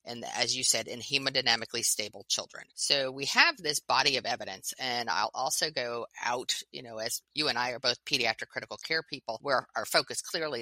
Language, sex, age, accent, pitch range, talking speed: English, female, 30-49, American, 115-160 Hz, 205 wpm